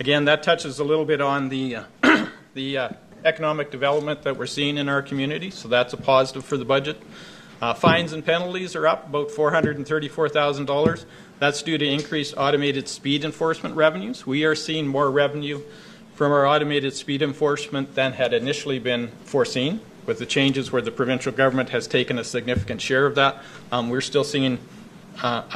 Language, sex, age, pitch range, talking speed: English, male, 50-69, 130-155 Hz, 180 wpm